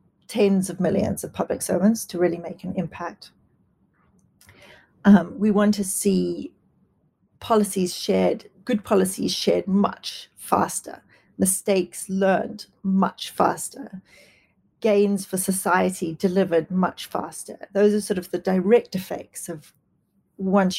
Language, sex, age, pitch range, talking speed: English, female, 40-59, 180-205 Hz, 120 wpm